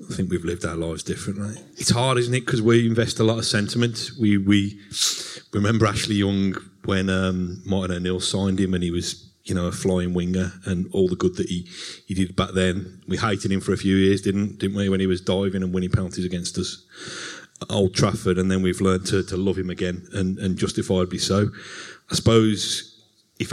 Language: English